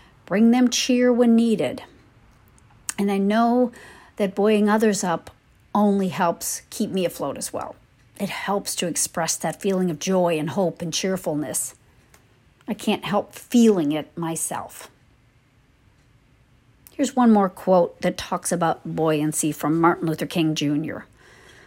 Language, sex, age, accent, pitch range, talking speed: English, female, 50-69, American, 170-215 Hz, 140 wpm